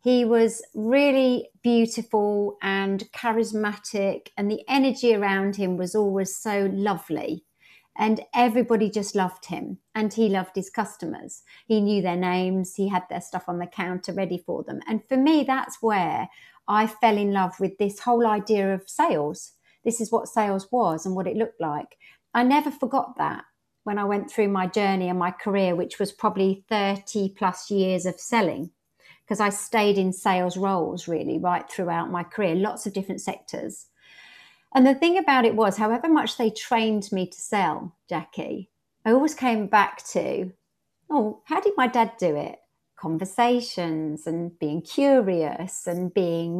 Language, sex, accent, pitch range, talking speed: English, female, British, 185-230 Hz, 170 wpm